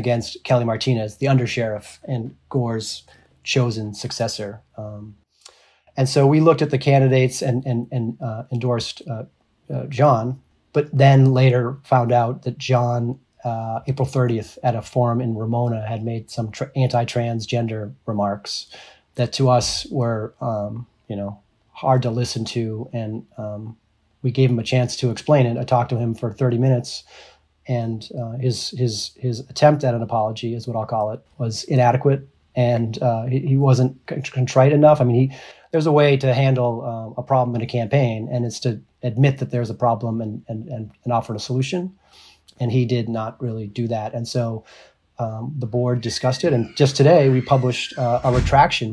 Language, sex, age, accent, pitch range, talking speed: English, male, 30-49, American, 115-130 Hz, 185 wpm